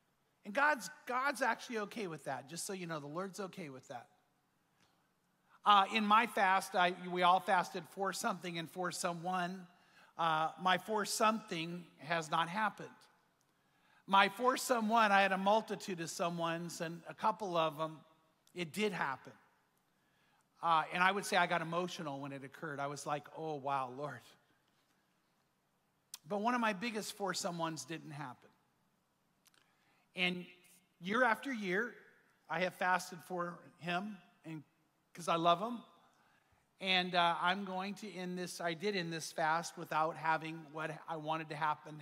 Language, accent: English, American